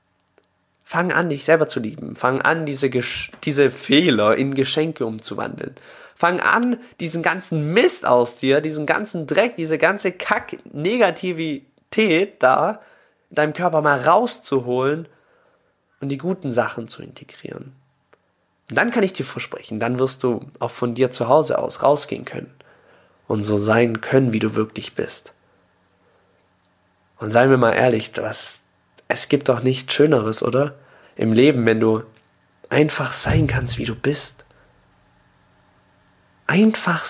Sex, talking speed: male, 140 wpm